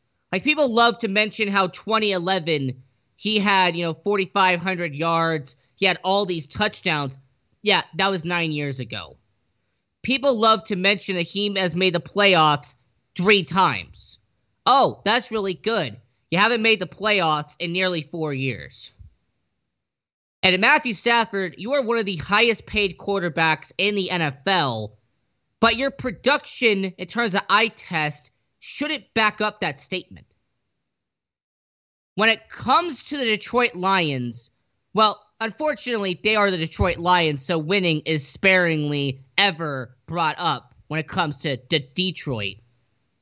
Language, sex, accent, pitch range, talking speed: English, male, American, 150-210 Hz, 145 wpm